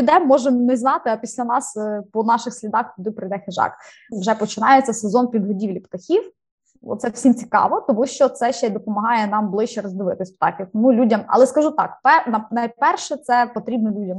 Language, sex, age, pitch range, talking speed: Ukrainian, female, 20-39, 210-265 Hz, 160 wpm